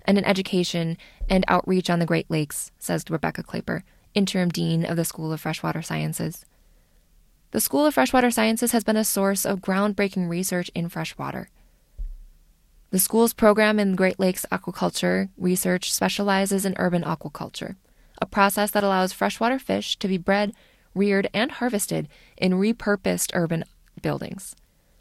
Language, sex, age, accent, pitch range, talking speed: English, female, 20-39, American, 165-205 Hz, 150 wpm